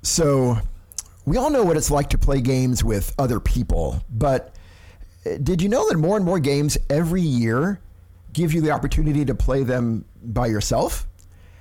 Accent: American